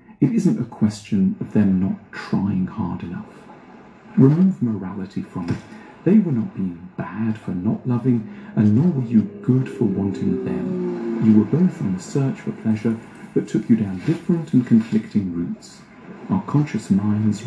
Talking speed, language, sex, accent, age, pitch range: 170 wpm, English, male, British, 40-59, 105-160 Hz